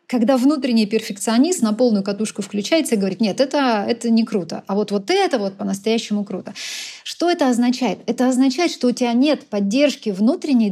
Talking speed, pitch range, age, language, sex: 180 wpm, 210-265 Hz, 30-49, Russian, female